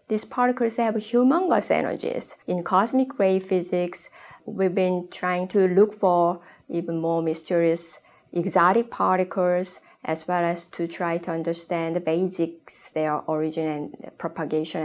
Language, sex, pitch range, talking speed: English, female, 170-225 Hz, 135 wpm